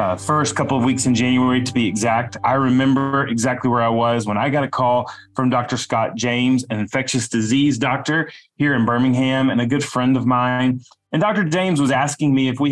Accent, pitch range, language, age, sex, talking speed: American, 125-155 Hz, English, 30-49, male, 215 wpm